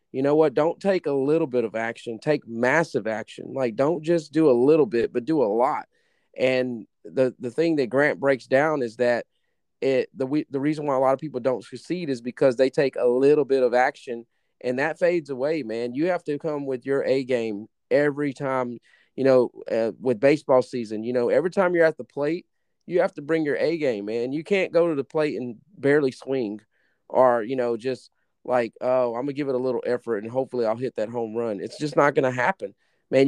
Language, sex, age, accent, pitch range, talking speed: English, male, 30-49, American, 125-155 Hz, 235 wpm